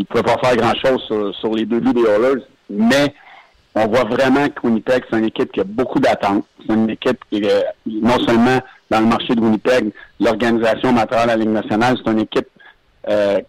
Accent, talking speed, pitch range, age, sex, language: French, 215 wpm, 115-140 Hz, 50-69, male, French